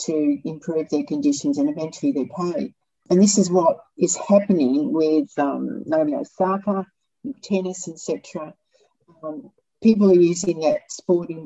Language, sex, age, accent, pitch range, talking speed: English, female, 60-79, Australian, 155-250 Hz, 140 wpm